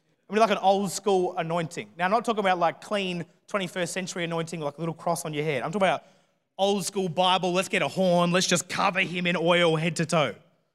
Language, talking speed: English, 240 wpm